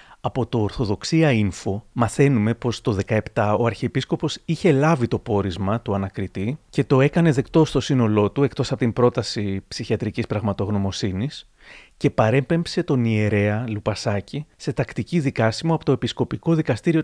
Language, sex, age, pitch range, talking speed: Greek, male, 30-49, 110-145 Hz, 145 wpm